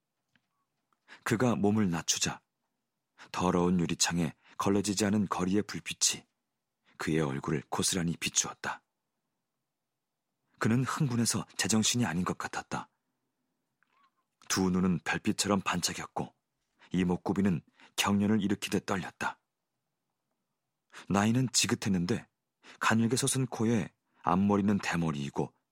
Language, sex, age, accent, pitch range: Korean, male, 40-59, native, 90-110 Hz